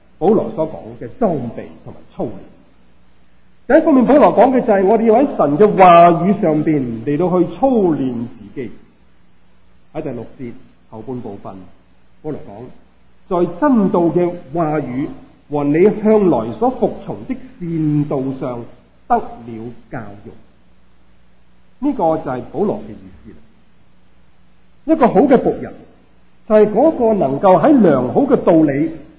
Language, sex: Chinese, male